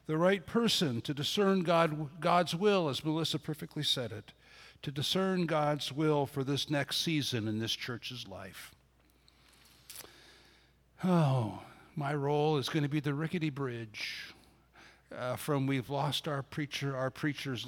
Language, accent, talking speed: English, American, 145 wpm